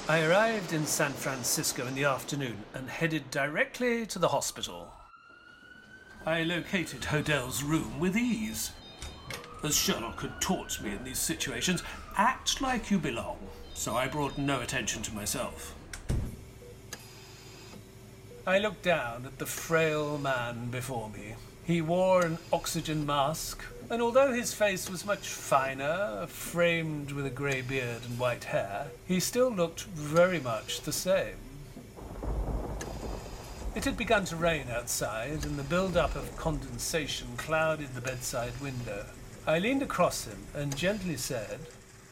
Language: English